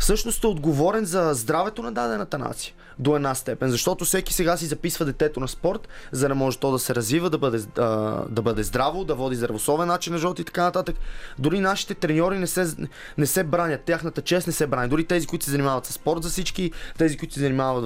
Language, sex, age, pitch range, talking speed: Bulgarian, male, 20-39, 140-170 Hz, 220 wpm